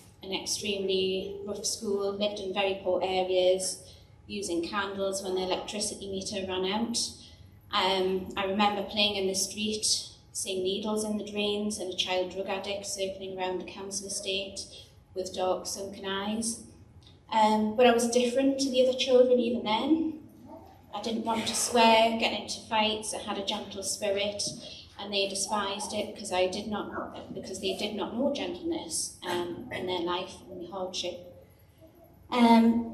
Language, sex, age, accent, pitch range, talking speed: English, female, 30-49, British, 185-210 Hz, 165 wpm